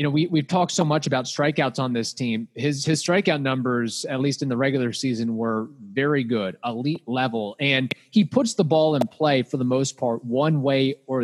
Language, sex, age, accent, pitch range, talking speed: English, male, 30-49, American, 130-160 Hz, 220 wpm